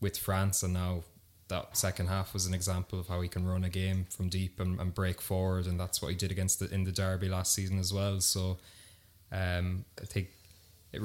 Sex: male